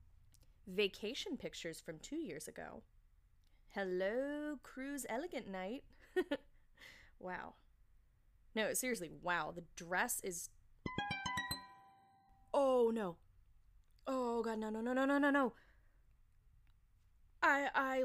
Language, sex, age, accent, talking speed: English, female, 20-39, American, 95 wpm